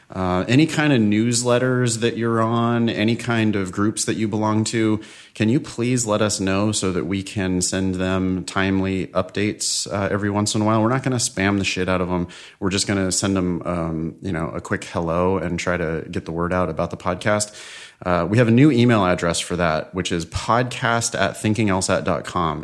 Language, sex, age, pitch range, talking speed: English, male, 30-49, 90-115 Hz, 215 wpm